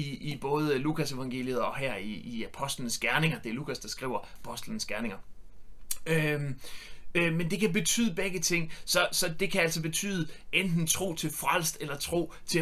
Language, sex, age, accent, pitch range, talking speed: Danish, male, 30-49, native, 145-175 Hz, 180 wpm